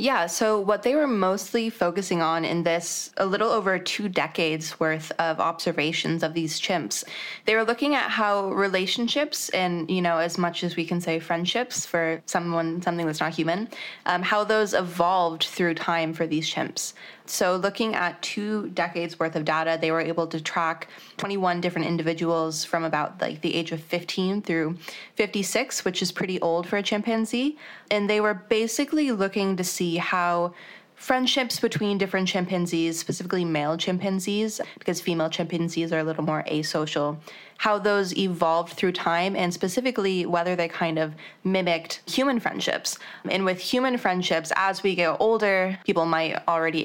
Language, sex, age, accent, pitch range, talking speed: English, female, 20-39, American, 165-205 Hz, 170 wpm